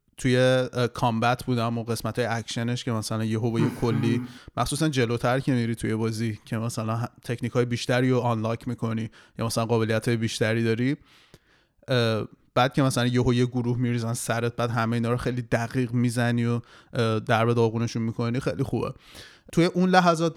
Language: Persian